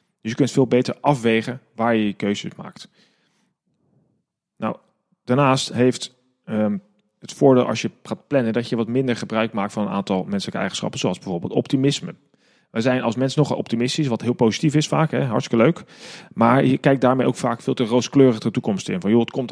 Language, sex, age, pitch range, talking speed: Dutch, male, 40-59, 110-135 Hz, 195 wpm